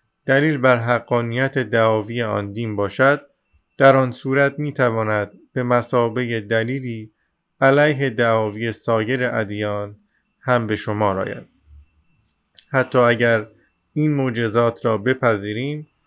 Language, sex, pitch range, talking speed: Persian, male, 110-130 Hz, 105 wpm